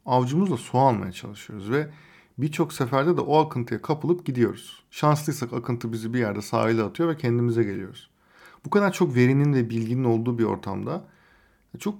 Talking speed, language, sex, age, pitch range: 160 wpm, Turkish, male, 50-69, 120-160 Hz